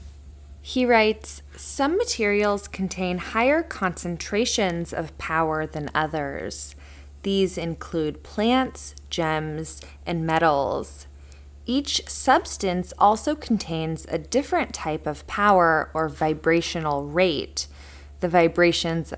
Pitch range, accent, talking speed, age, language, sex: 150-195 Hz, American, 95 wpm, 20-39, English, female